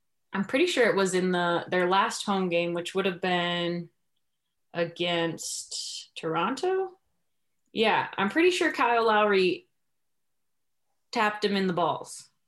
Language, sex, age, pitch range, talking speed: English, female, 20-39, 175-230 Hz, 135 wpm